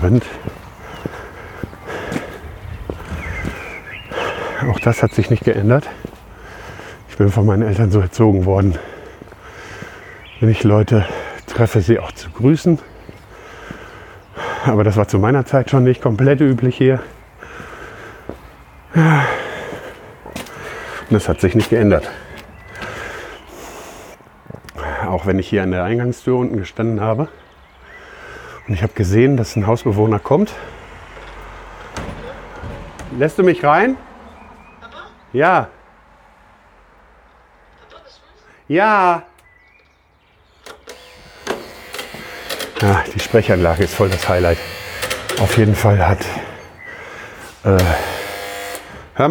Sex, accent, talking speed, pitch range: male, German, 95 wpm, 100-130 Hz